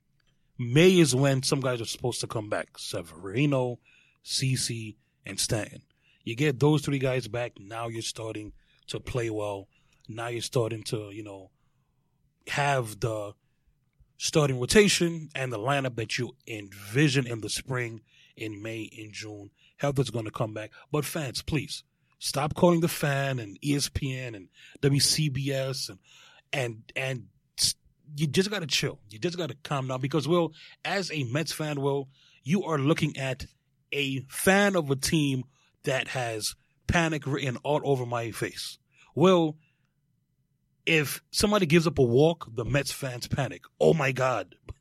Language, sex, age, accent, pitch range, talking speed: English, male, 30-49, American, 120-150 Hz, 155 wpm